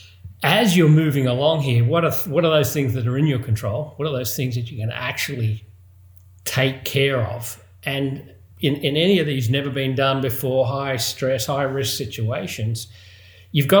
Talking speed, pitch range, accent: 185 wpm, 110-145 Hz, Australian